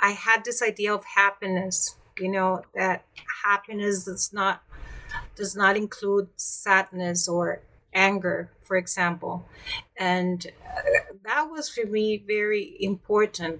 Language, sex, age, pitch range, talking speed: English, female, 30-49, 185-220 Hz, 120 wpm